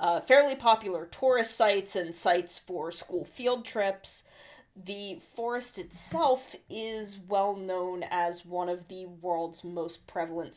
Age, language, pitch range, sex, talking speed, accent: 20-39, English, 175-210 Hz, female, 135 wpm, American